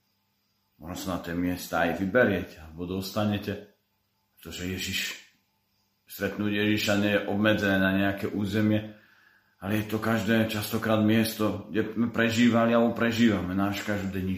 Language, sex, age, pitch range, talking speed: Slovak, male, 40-59, 100-110 Hz, 130 wpm